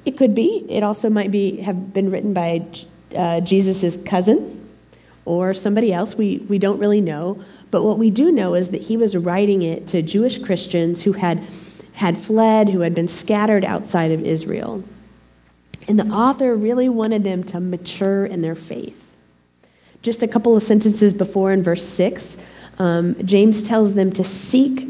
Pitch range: 180-225 Hz